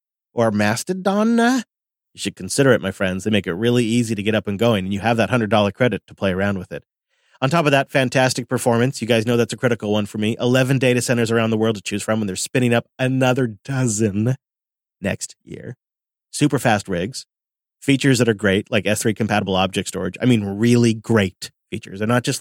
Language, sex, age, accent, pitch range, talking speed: English, male, 30-49, American, 110-135 Hz, 215 wpm